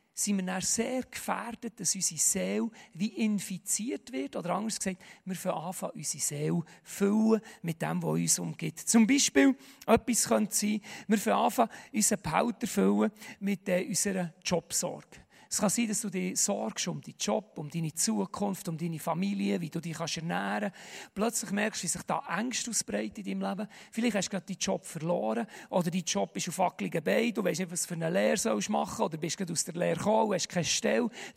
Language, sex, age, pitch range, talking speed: German, male, 40-59, 180-220 Hz, 195 wpm